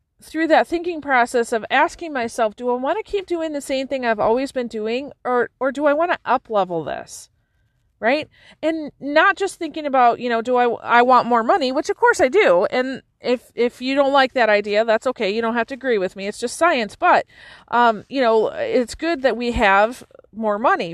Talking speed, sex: 225 wpm, female